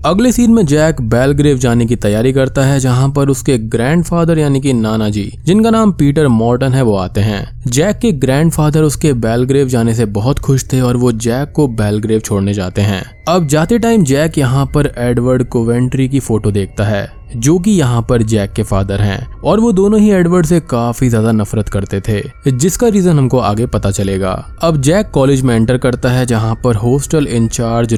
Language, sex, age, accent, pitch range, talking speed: Hindi, male, 20-39, native, 105-140 Hz, 125 wpm